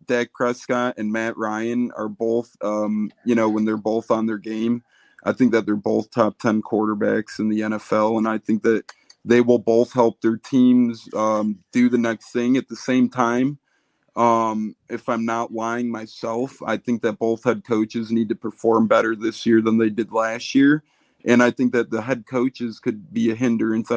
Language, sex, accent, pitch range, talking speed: English, male, American, 115-130 Hz, 200 wpm